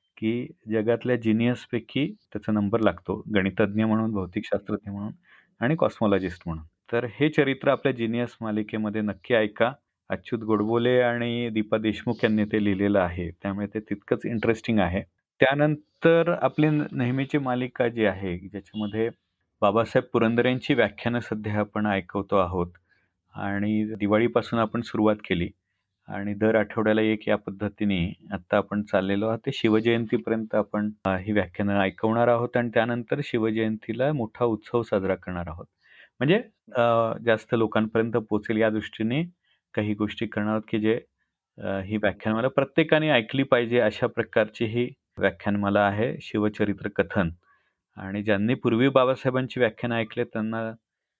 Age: 30-49